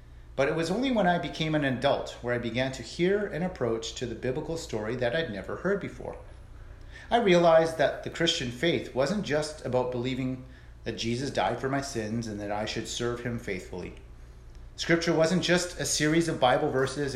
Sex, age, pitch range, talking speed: male, 40-59, 95-135 Hz, 195 wpm